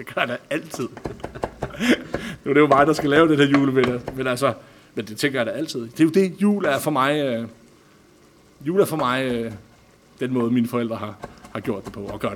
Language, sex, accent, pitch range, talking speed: Danish, male, native, 120-160 Hz, 245 wpm